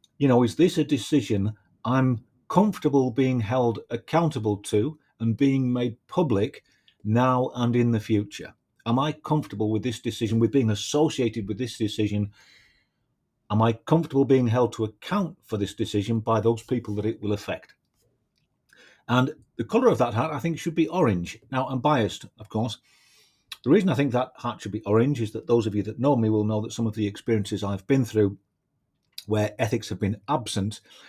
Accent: British